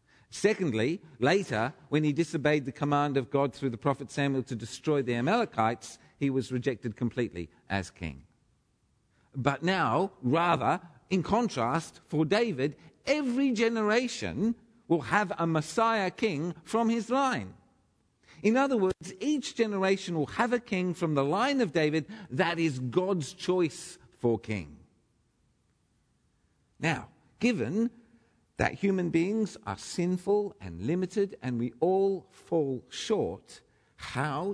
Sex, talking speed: male, 130 wpm